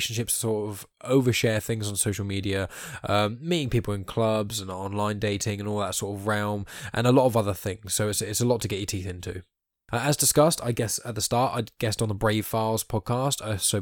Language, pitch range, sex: English, 95-115 Hz, male